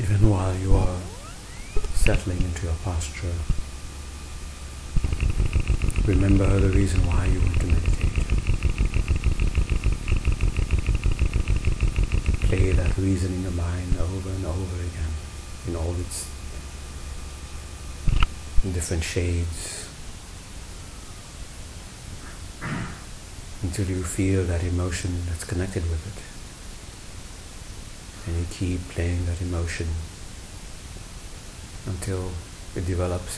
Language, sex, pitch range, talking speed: English, male, 80-95 Hz, 90 wpm